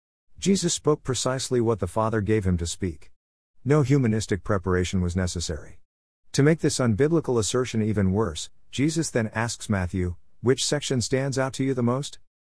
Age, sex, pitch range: 50-69, male, 90-115 Hz